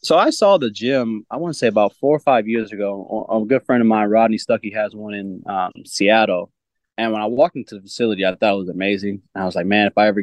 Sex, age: male, 20-39